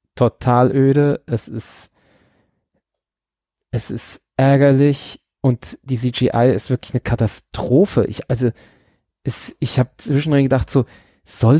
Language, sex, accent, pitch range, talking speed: German, male, German, 110-150 Hz, 120 wpm